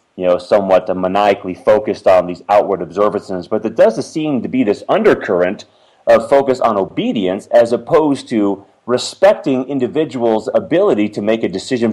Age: 30-49